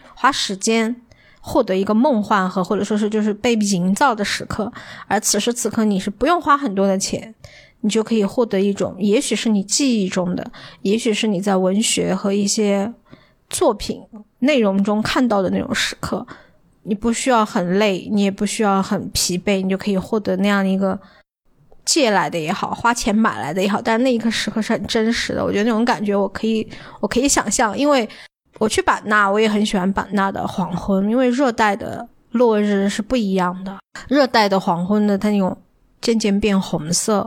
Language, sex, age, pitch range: Chinese, female, 20-39, 195-230 Hz